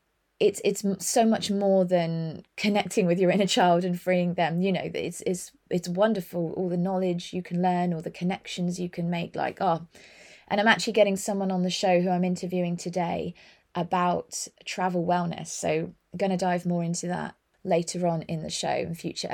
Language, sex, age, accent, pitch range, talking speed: English, female, 20-39, British, 175-210 Hz, 200 wpm